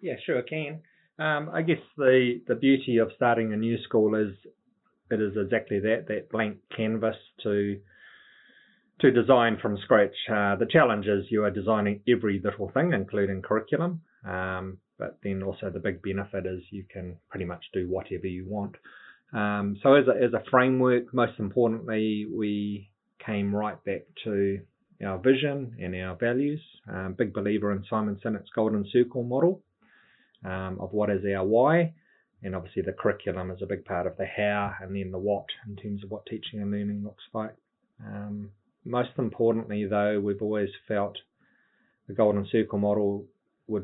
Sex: male